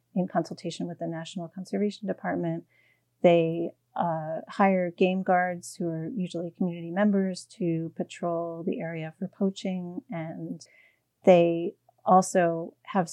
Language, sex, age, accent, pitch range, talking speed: English, female, 30-49, American, 165-195 Hz, 125 wpm